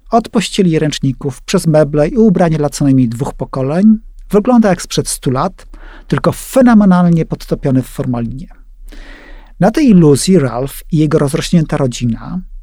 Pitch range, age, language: 140-185 Hz, 40-59, English